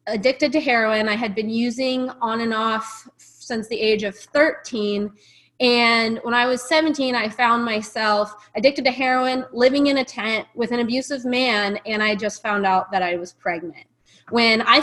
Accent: American